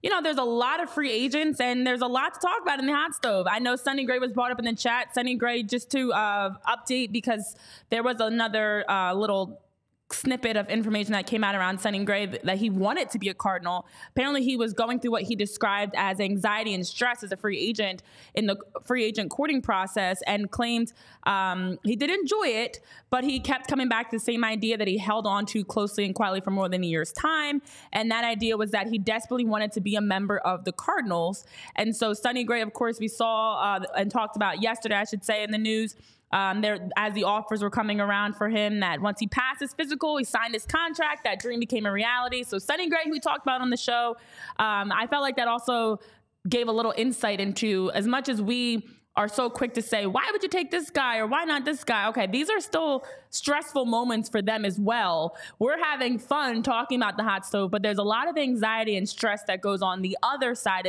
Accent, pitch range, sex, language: American, 200-250 Hz, female, English